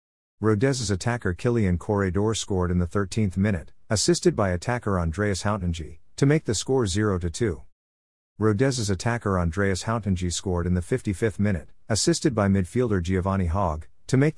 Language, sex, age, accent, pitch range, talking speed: English, male, 50-69, American, 90-115 Hz, 145 wpm